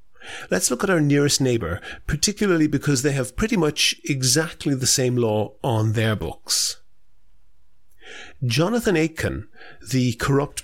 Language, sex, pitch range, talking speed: English, male, 115-150 Hz, 130 wpm